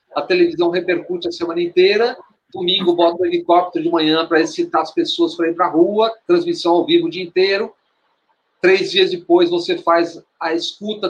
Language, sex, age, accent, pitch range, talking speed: Portuguese, male, 40-59, Brazilian, 170-230 Hz, 185 wpm